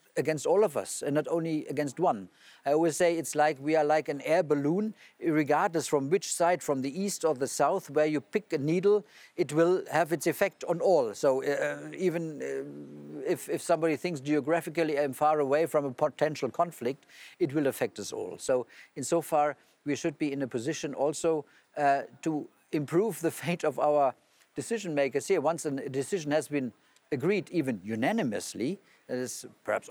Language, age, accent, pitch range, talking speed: Polish, 50-69, German, 140-165 Hz, 190 wpm